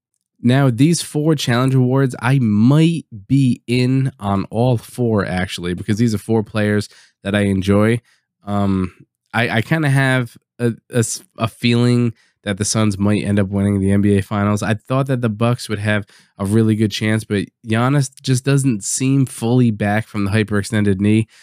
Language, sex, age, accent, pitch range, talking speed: English, male, 20-39, American, 100-125 Hz, 175 wpm